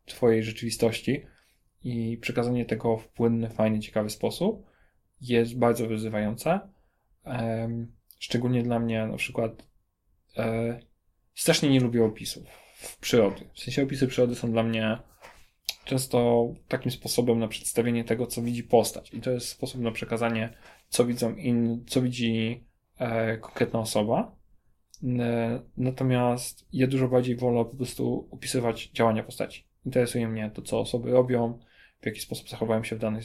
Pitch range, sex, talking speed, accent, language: 110-120 Hz, male, 135 wpm, native, Polish